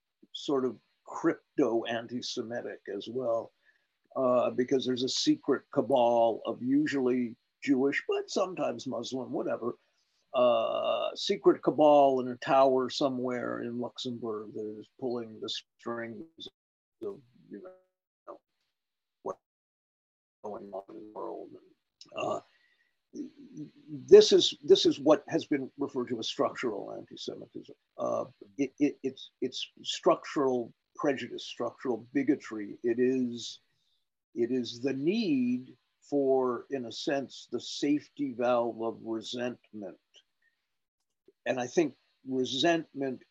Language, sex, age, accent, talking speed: English, male, 50-69, American, 115 wpm